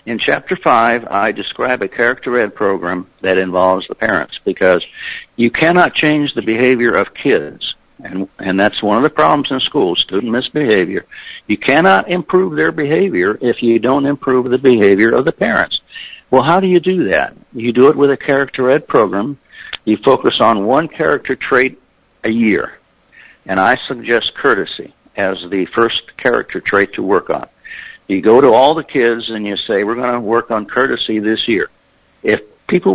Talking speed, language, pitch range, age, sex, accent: 180 wpm, English, 115-170 Hz, 60-79, male, American